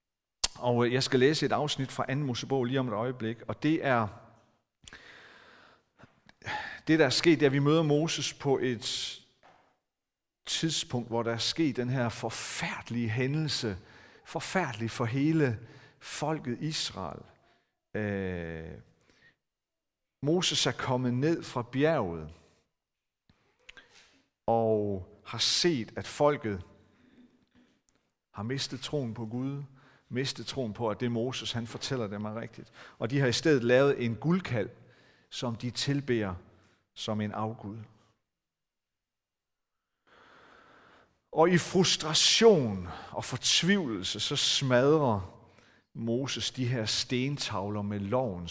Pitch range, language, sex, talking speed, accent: 110-145 Hz, Danish, male, 120 wpm, native